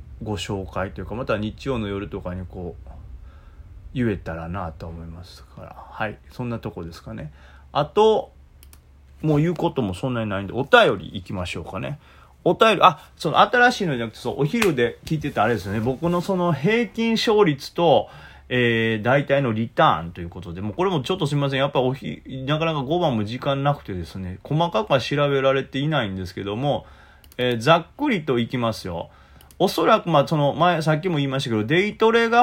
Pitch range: 95-155 Hz